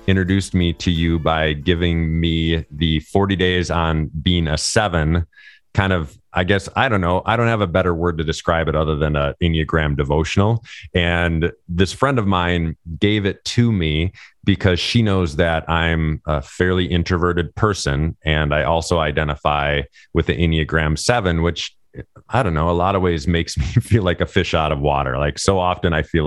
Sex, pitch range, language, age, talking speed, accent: male, 80-90 Hz, English, 30-49, 190 wpm, American